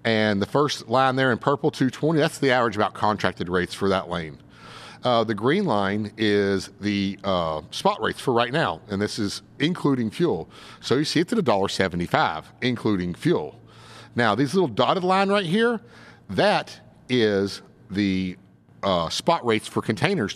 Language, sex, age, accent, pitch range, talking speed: English, male, 50-69, American, 105-150 Hz, 170 wpm